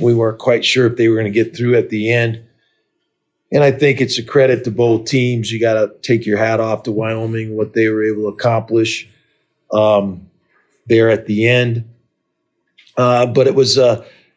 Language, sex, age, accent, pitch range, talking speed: English, male, 40-59, American, 110-125 Hz, 200 wpm